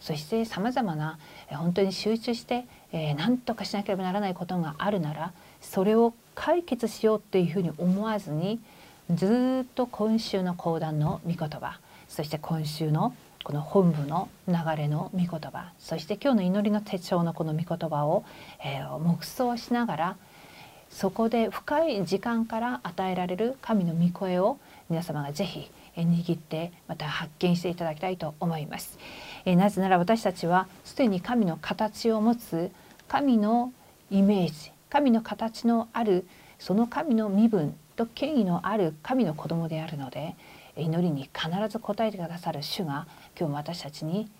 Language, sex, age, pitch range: Korean, female, 40-59, 160-215 Hz